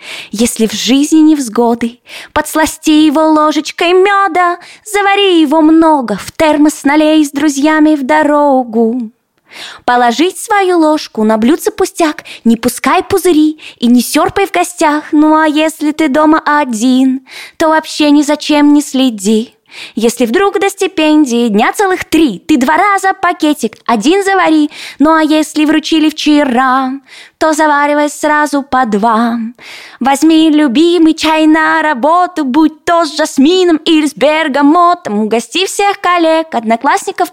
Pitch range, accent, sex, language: 280-325 Hz, native, female, Russian